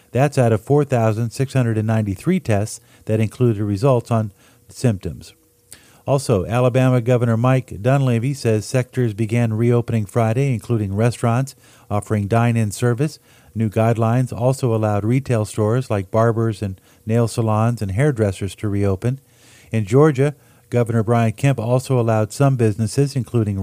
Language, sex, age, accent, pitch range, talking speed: English, male, 50-69, American, 110-125 Hz, 125 wpm